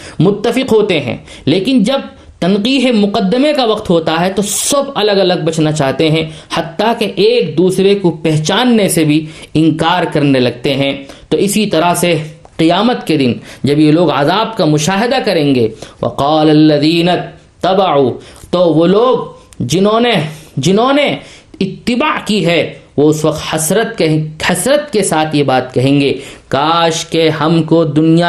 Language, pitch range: English, 155-225 Hz